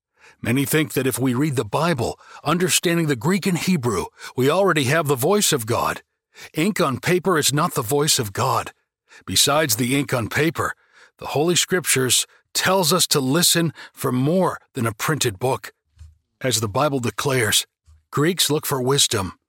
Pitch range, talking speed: 130-165 Hz, 170 wpm